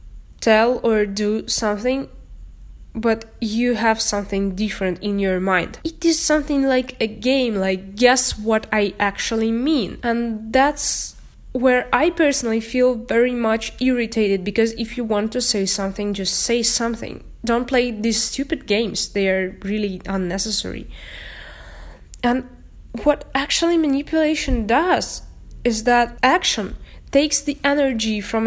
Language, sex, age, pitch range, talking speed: English, female, 20-39, 215-260 Hz, 135 wpm